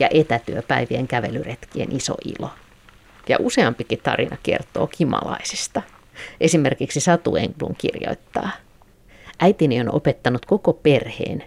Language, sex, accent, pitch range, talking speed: Finnish, female, native, 120-145 Hz, 100 wpm